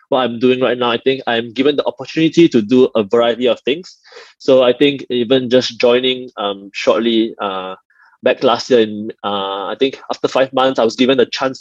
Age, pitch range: 20-39, 110-135 Hz